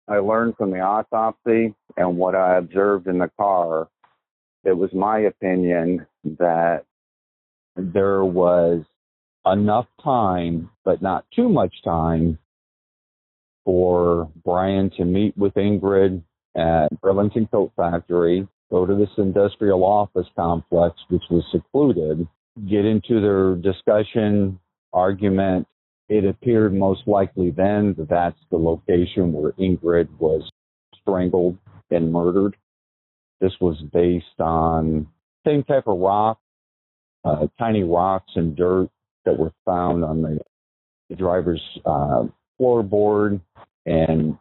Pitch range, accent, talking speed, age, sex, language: 85-100 Hz, American, 120 wpm, 50-69, male, English